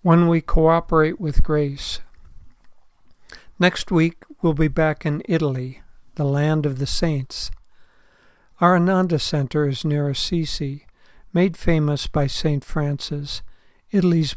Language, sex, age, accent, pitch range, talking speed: English, male, 60-79, American, 140-165 Hz, 120 wpm